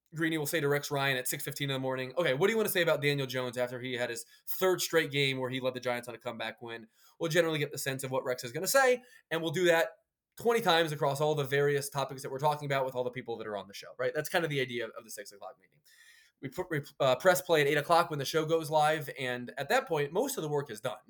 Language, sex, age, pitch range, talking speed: English, male, 20-39, 130-170 Hz, 305 wpm